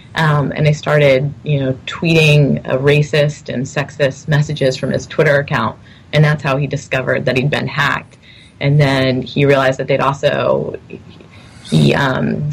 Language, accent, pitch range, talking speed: English, American, 135-155 Hz, 155 wpm